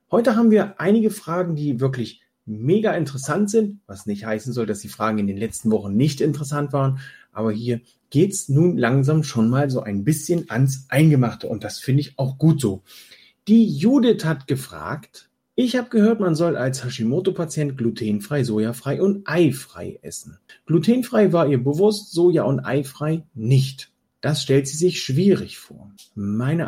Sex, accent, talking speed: male, German, 165 wpm